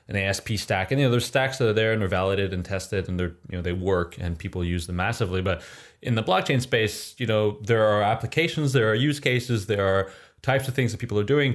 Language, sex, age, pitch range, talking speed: English, male, 20-39, 95-125 Hz, 260 wpm